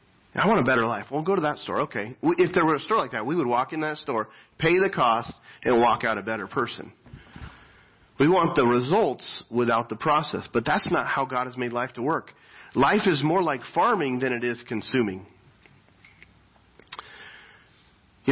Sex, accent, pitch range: male, American, 110-150 Hz